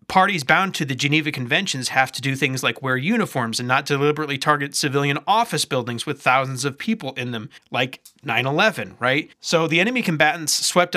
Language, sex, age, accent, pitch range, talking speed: English, male, 30-49, American, 125-155 Hz, 185 wpm